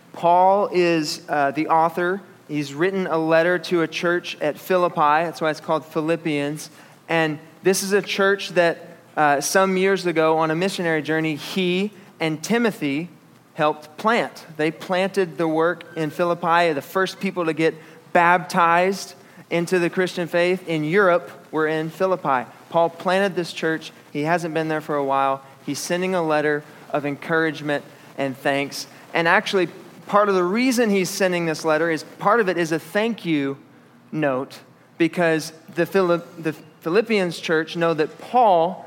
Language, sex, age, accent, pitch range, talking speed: English, male, 20-39, American, 155-185 Hz, 160 wpm